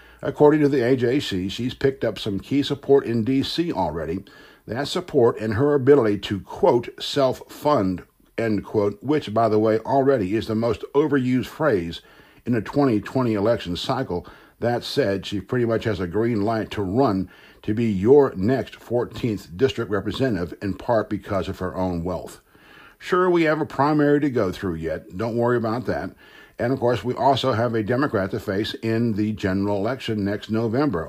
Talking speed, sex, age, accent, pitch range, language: 180 wpm, male, 60-79, American, 100-135 Hz, English